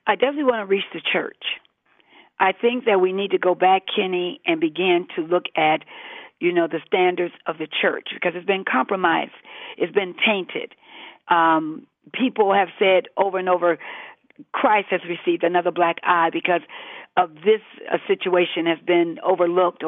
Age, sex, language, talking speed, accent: 50-69, female, English, 170 wpm, American